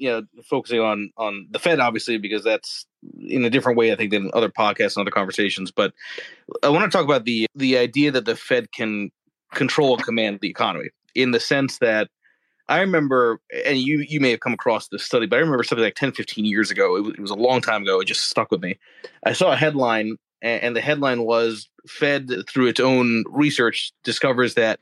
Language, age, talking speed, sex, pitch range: English, 30-49, 225 wpm, male, 110-140 Hz